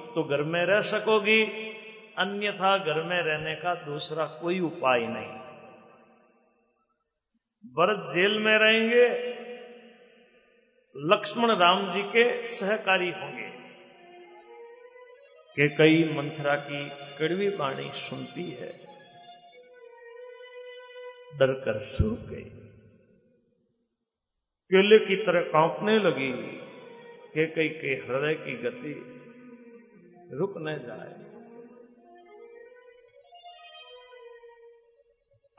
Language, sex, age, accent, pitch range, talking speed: Hindi, male, 50-69, native, 165-245 Hz, 90 wpm